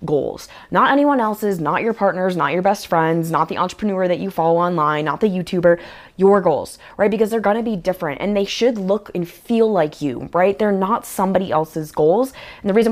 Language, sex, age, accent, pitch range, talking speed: English, female, 20-39, American, 160-200 Hz, 220 wpm